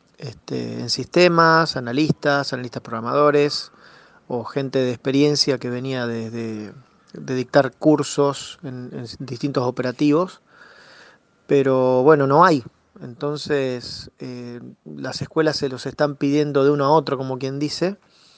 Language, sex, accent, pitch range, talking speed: Spanish, male, Argentinian, 125-155 Hz, 130 wpm